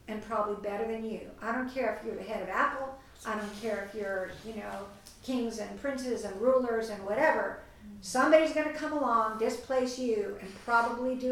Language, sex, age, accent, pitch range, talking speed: English, female, 50-69, American, 225-285 Hz, 200 wpm